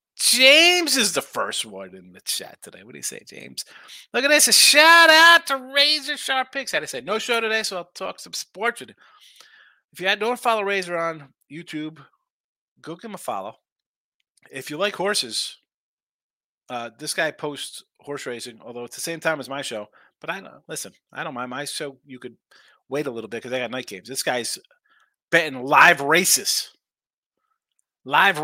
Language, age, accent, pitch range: English, 30-49, American, 130-220 Hz